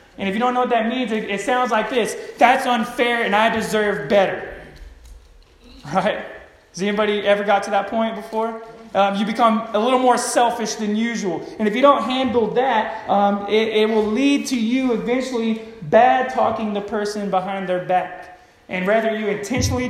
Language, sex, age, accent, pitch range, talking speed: English, male, 20-39, American, 185-230 Hz, 185 wpm